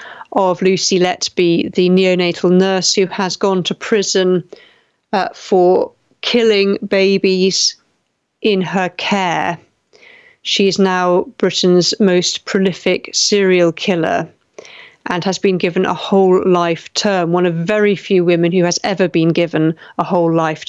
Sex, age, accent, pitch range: female, 40-59, British, 180-220 Hz